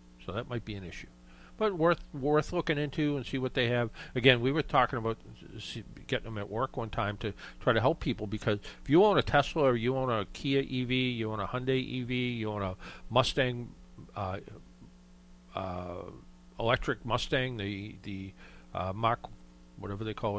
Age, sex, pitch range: 50-69, male, 100-130 Hz